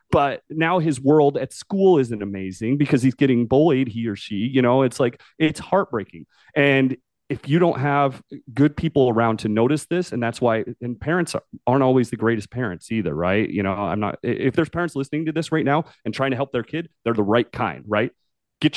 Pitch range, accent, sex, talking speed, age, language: 110-145 Hz, American, male, 215 wpm, 30-49, English